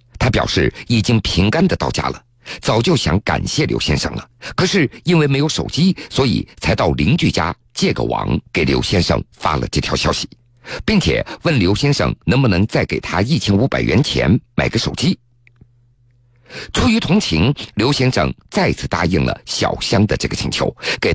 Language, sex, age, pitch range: Chinese, male, 50-69, 120-145 Hz